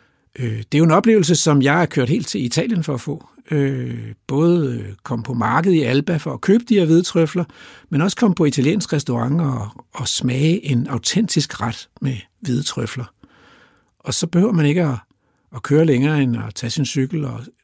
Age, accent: 60-79, native